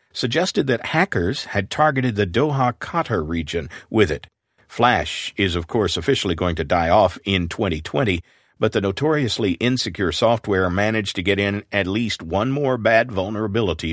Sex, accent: male, American